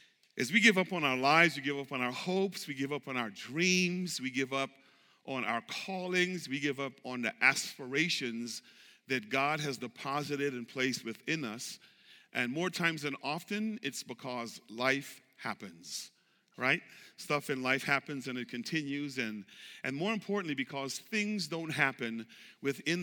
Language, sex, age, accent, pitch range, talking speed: English, male, 40-59, American, 125-170 Hz, 170 wpm